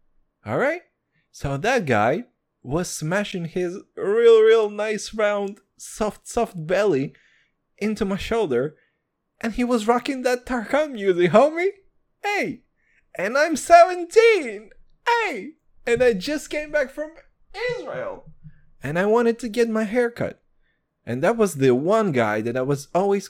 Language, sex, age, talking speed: English, male, 20-39, 140 wpm